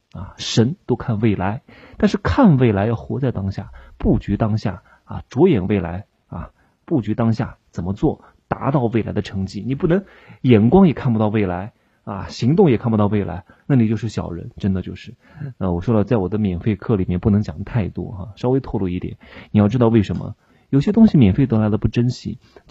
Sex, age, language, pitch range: male, 30-49, Chinese, 100-130 Hz